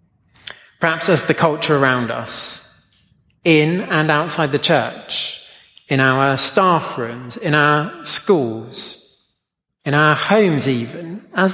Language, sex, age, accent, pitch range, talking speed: English, male, 30-49, British, 135-175 Hz, 120 wpm